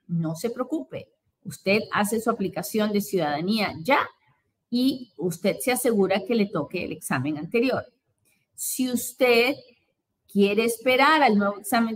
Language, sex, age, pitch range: Spanish, female, 30-49, 180-245 Hz